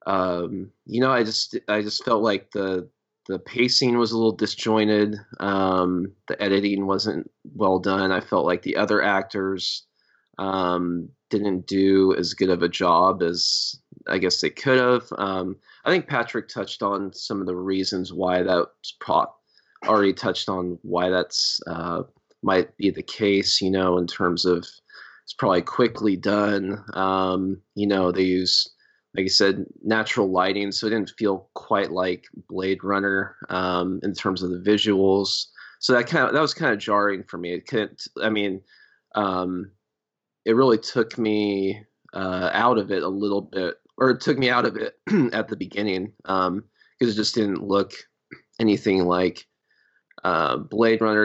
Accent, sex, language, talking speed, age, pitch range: American, male, English, 170 wpm, 20-39, 95-105 Hz